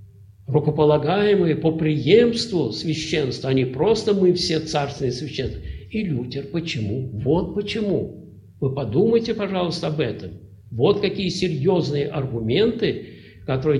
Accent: native